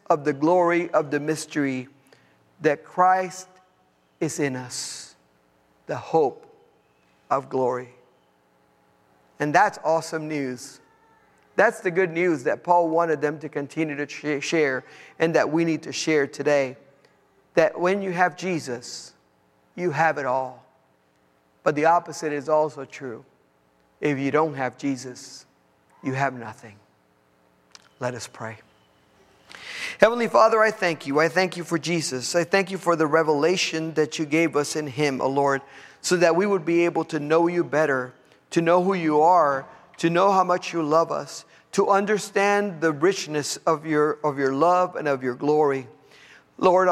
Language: English